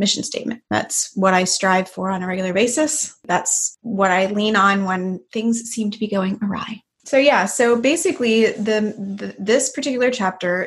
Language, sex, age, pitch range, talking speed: English, female, 20-39, 190-225 Hz, 180 wpm